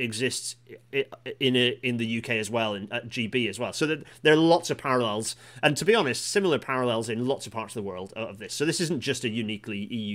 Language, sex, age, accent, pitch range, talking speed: English, male, 30-49, British, 110-135 Hz, 250 wpm